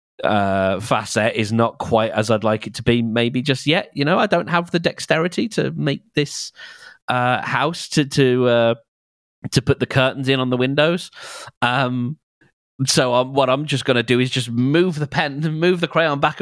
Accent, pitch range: British, 105-140 Hz